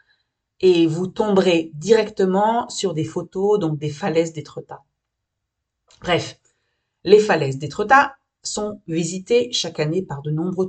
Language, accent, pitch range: French, French, 155-215 Hz